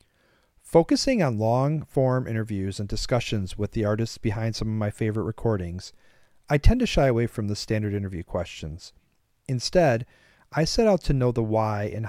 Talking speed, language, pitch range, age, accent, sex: 170 wpm, English, 100-130 Hz, 40-59, American, male